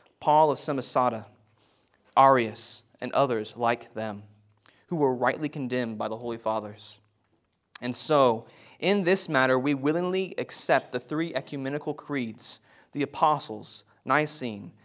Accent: American